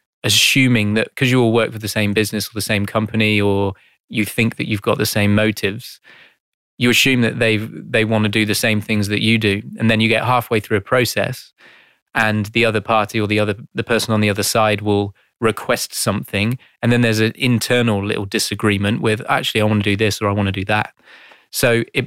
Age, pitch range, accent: 20-39, 105-115 Hz, British